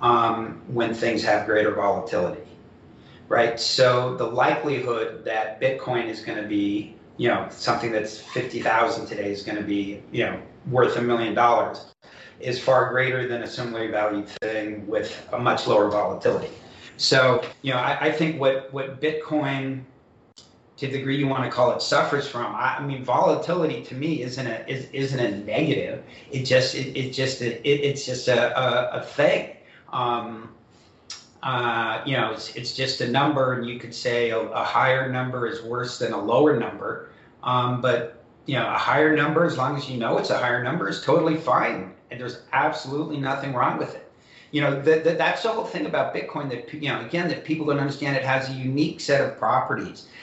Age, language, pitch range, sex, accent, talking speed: 40-59, English, 115-140 Hz, male, American, 195 wpm